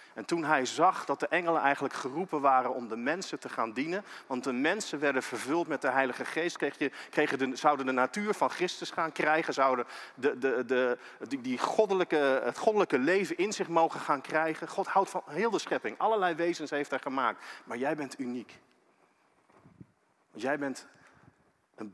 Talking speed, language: 190 wpm, Dutch